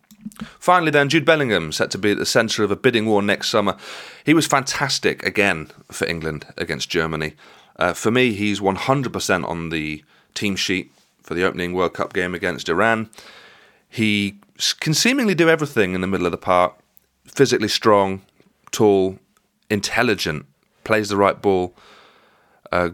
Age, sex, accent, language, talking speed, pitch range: 30-49, male, British, English, 165 wpm, 95-130 Hz